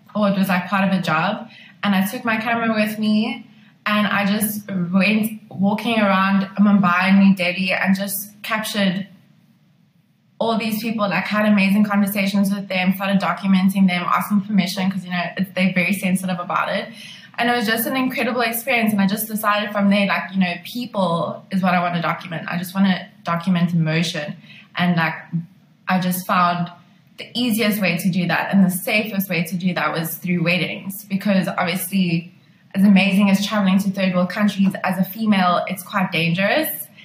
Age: 20-39